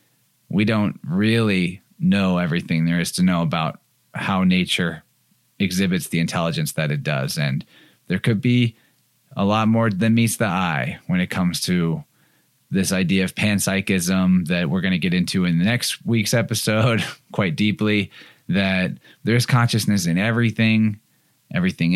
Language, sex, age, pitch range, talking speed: English, male, 30-49, 95-115 Hz, 155 wpm